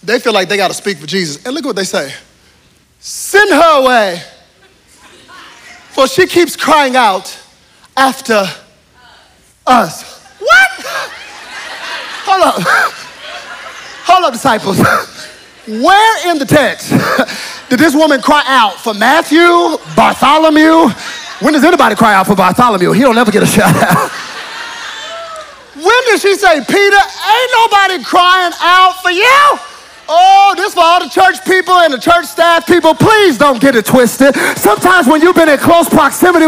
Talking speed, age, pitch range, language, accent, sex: 150 wpm, 30-49, 300-380 Hz, English, American, male